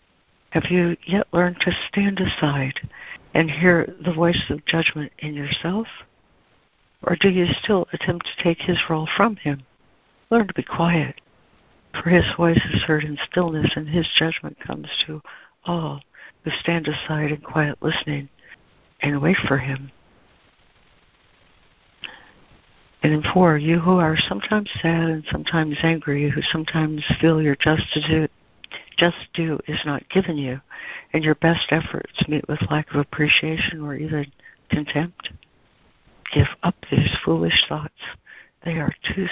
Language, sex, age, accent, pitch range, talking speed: English, female, 60-79, American, 150-175 Hz, 145 wpm